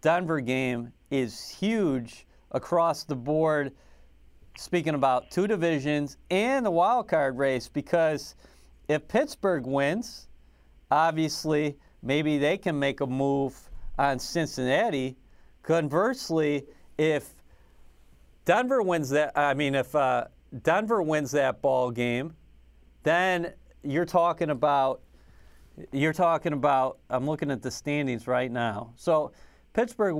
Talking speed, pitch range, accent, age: 115 wpm, 125-155 Hz, American, 40-59